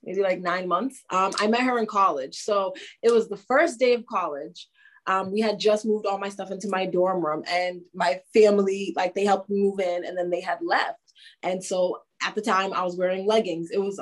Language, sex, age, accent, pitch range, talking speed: English, female, 20-39, American, 180-225 Hz, 235 wpm